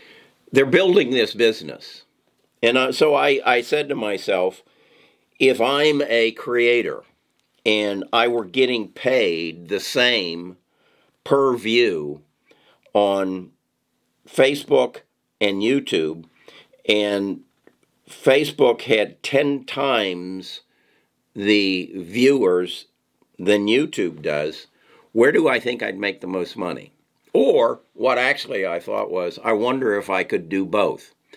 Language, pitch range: English, 90-120 Hz